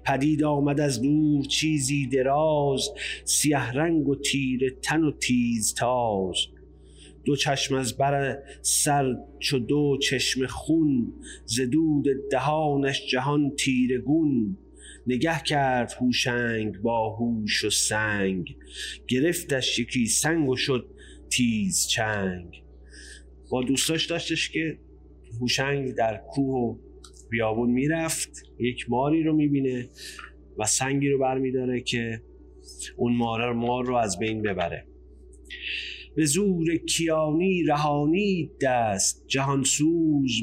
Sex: male